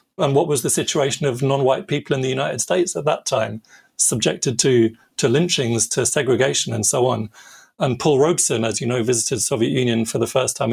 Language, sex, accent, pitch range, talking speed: English, male, British, 120-145 Hz, 215 wpm